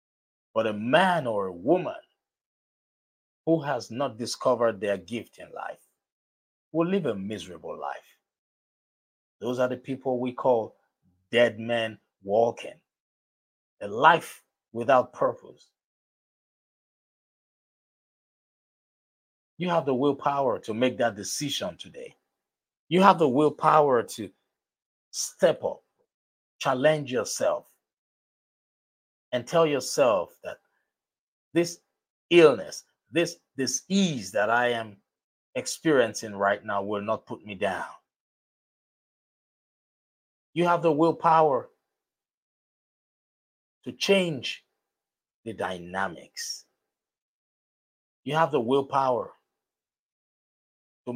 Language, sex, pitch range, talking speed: English, male, 110-160 Hz, 95 wpm